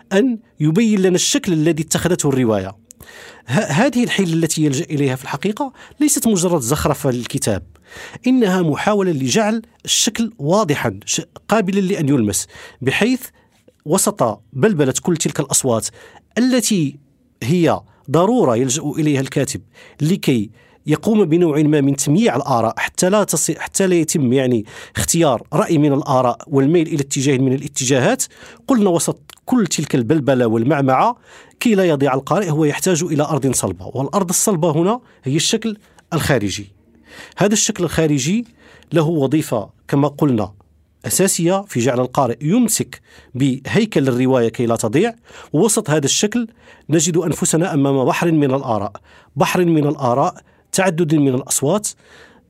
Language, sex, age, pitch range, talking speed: Arabic, male, 40-59, 130-190 Hz, 130 wpm